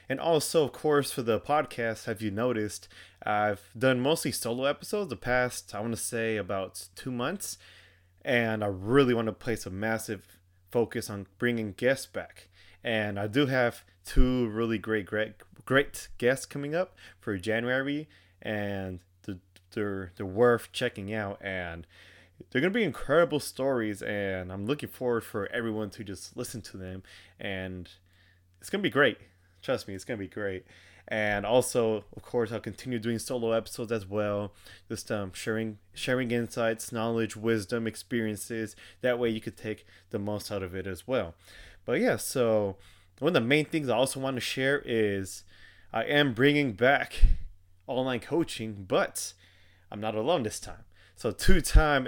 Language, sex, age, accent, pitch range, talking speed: English, male, 20-39, American, 95-125 Hz, 170 wpm